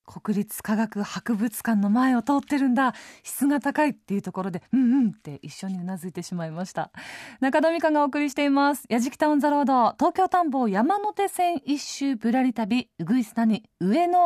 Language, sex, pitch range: Japanese, female, 210-325 Hz